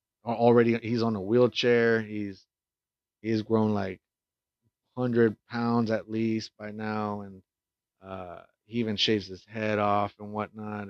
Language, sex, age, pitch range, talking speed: English, male, 30-49, 105-125 Hz, 140 wpm